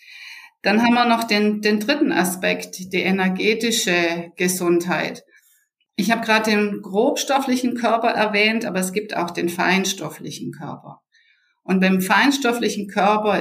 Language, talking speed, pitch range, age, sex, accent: German, 130 wpm, 180-215 Hz, 50-69, female, German